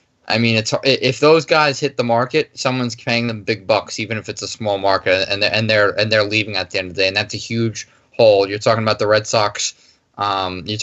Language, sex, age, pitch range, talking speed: English, male, 20-39, 105-120 Hz, 255 wpm